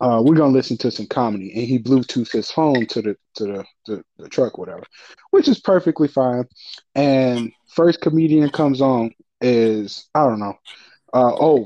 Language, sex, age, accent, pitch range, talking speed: English, male, 20-39, American, 110-145 Hz, 180 wpm